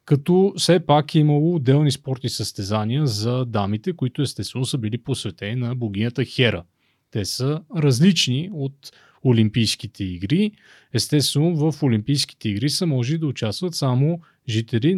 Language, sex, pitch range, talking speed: Bulgarian, male, 115-150 Hz, 135 wpm